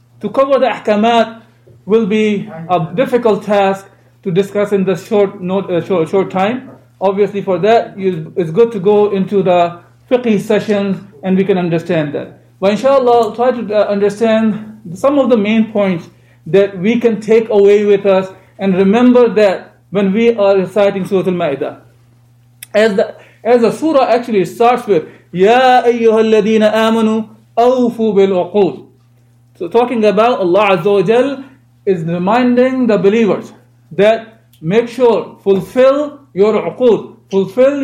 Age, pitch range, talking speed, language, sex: 50-69, 185-235 Hz, 145 wpm, English, male